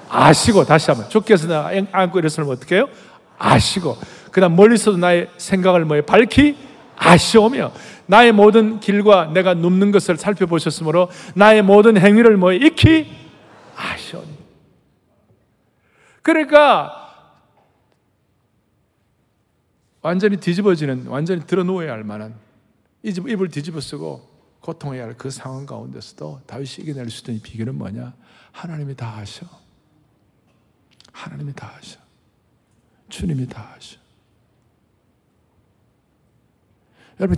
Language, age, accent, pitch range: Korean, 40-59, native, 125-195 Hz